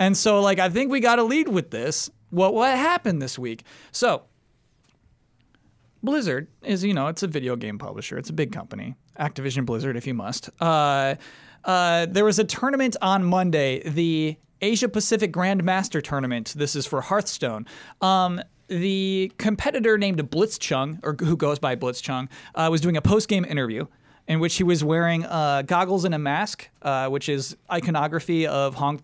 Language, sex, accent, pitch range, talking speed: English, male, American, 140-190 Hz, 175 wpm